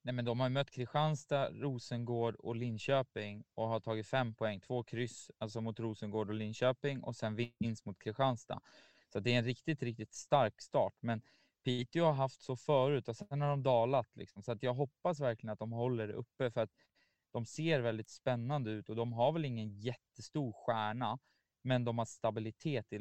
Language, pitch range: English, 105-125 Hz